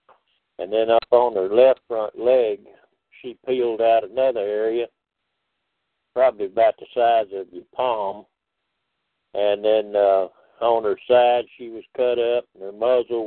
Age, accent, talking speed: 60-79, American, 150 wpm